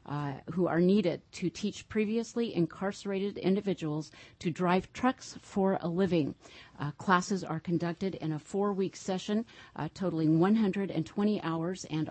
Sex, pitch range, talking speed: female, 160-195 Hz, 140 wpm